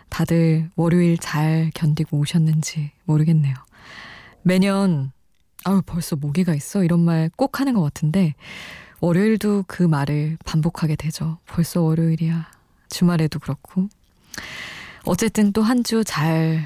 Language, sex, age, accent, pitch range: Korean, female, 20-39, native, 155-190 Hz